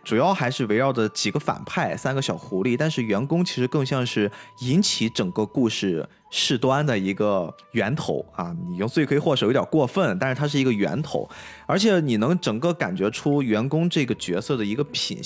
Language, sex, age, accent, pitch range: Chinese, male, 20-39, native, 115-160 Hz